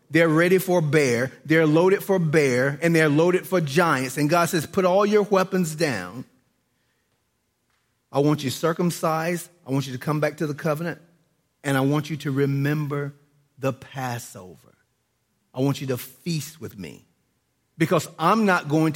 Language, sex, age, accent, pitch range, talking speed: English, male, 40-59, American, 135-165 Hz, 170 wpm